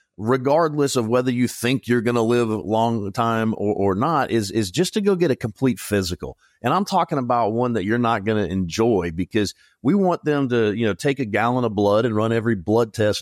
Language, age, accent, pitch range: English, 40-59, American, 100-130 Hz